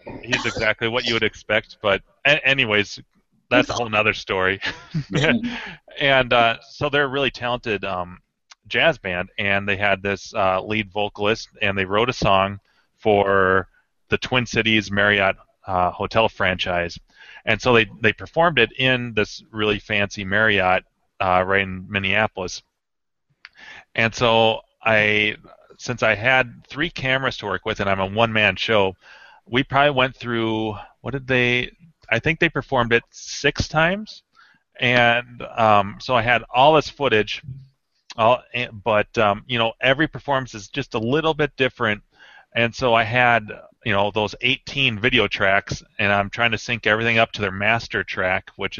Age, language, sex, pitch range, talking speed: 30-49, English, male, 100-125 Hz, 160 wpm